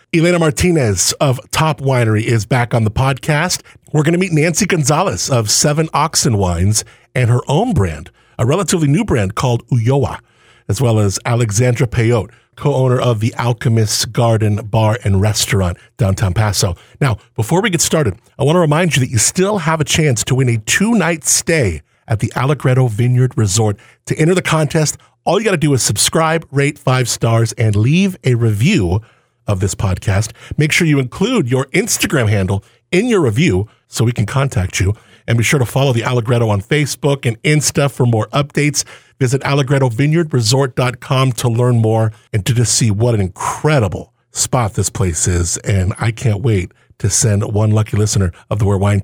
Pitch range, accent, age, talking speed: 110-145 Hz, American, 50-69, 185 wpm